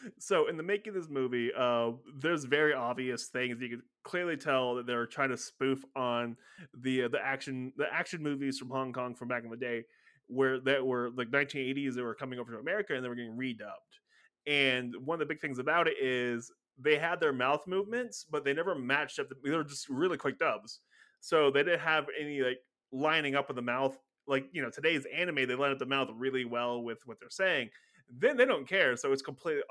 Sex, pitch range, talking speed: male, 130-180 Hz, 230 wpm